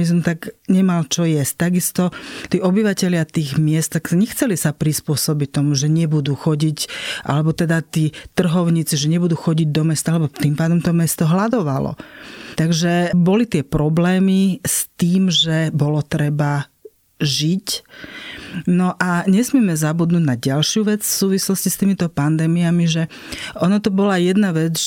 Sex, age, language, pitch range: female, 40-59, Slovak, 155-185 Hz